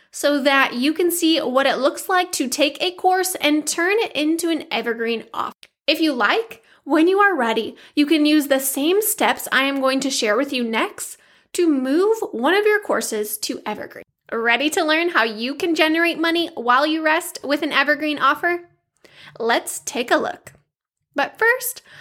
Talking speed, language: 190 wpm, English